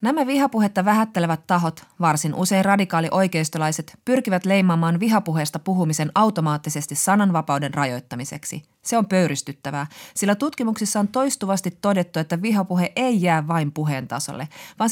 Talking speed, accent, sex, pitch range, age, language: 120 wpm, native, female, 155-205 Hz, 30-49, Finnish